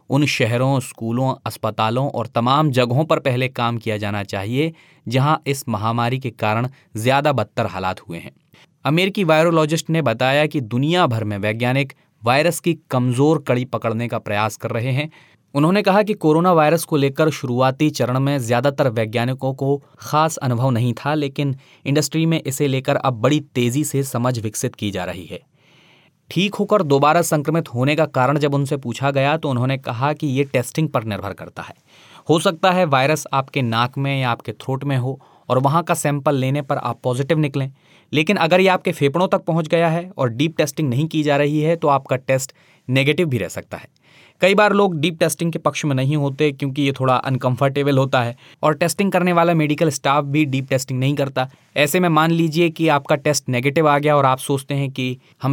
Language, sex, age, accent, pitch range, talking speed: Hindi, male, 20-39, native, 130-160 Hz, 200 wpm